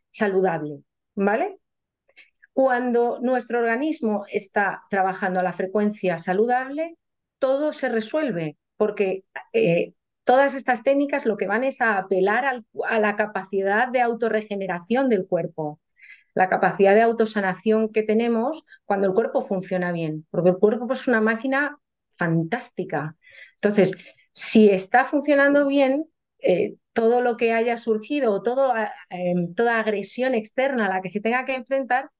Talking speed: 135 wpm